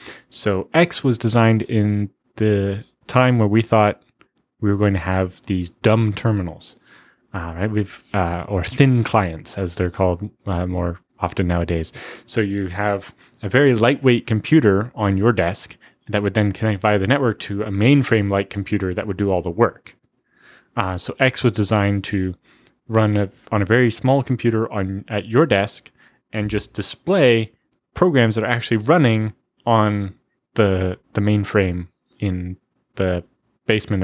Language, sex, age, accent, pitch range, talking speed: English, male, 20-39, American, 100-120 Hz, 160 wpm